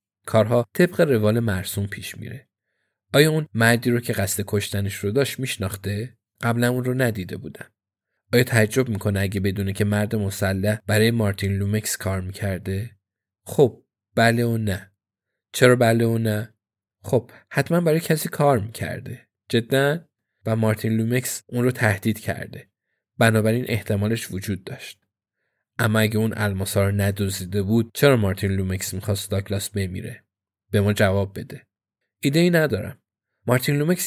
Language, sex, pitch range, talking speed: Persian, male, 100-120 Hz, 145 wpm